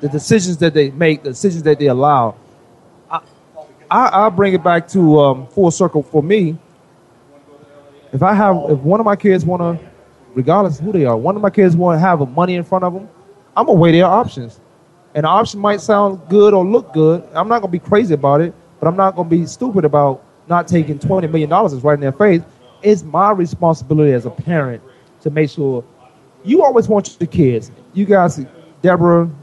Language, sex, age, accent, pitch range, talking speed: English, male, 30-49, American, 145-200 Hz, 210 wpm